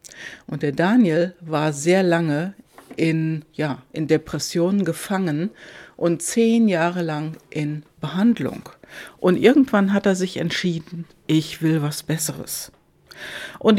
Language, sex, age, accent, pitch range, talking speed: German, female, 60-79, German, 155-200 Hz, 115 wpm